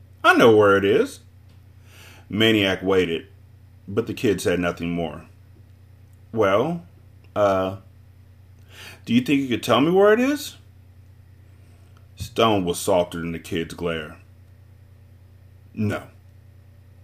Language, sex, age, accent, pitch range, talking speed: English, male, 40-59, American, 95-100 Hz, 115 wpm